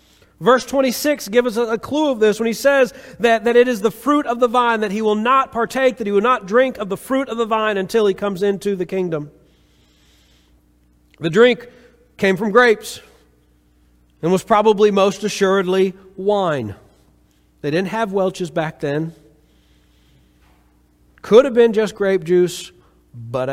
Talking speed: 170 wpm